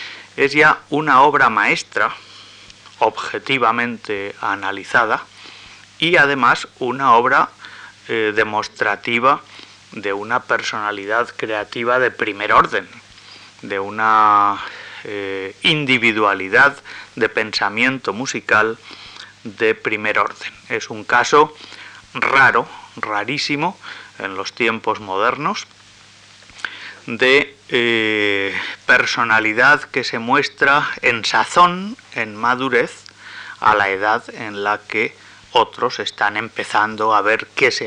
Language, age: Spanish, 30-49